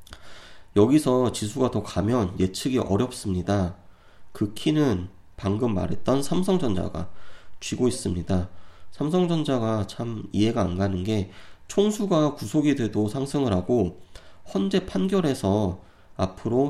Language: Korean